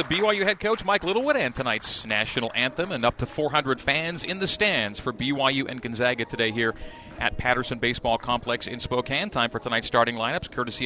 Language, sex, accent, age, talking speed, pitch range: English, male, American, 40-59, 200 wpm, 120-145 Hz